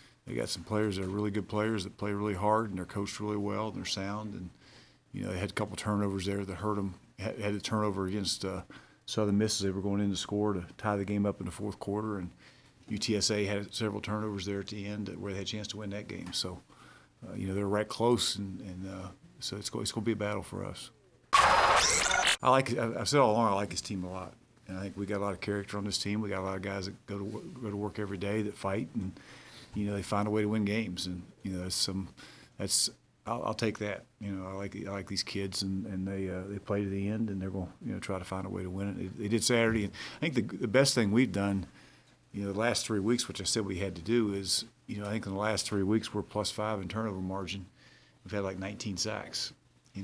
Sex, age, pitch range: male, 50-69, 95-105 Hz